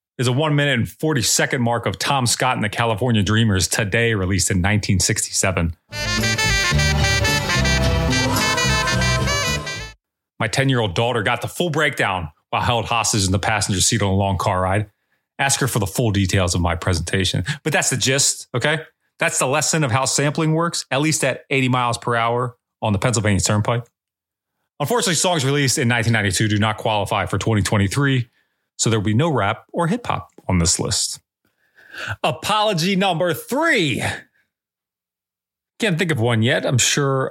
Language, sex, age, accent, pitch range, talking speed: English, male, 30-49, American, 105-160 Hz, 165 wpm